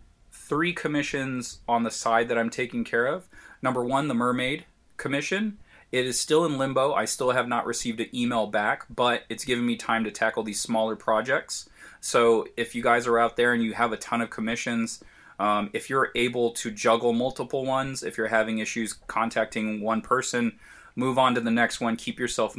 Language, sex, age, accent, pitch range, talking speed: English, male, 20-39, American, 110-130 Hz, 200 wpm